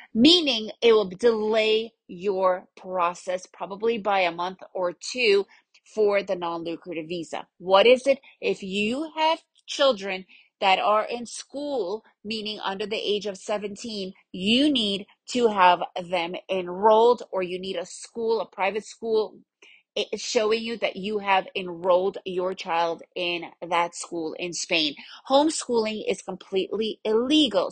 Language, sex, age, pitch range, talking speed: English, female, 30-49, 185-235 Hz, 140 wpm